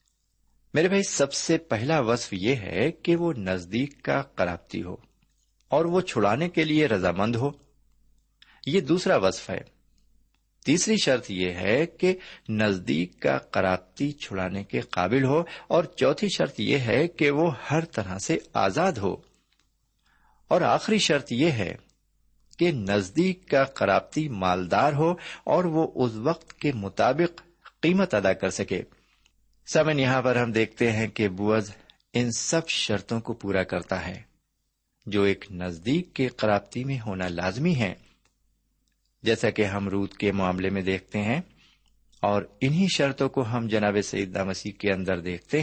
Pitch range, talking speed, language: 95-150 Hz, 150 wpm, Urdu